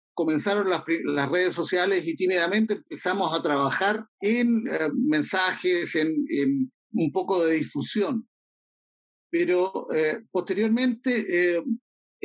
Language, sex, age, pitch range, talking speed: Spanish, male, 50-69, 170-250 Hz, 115 wpm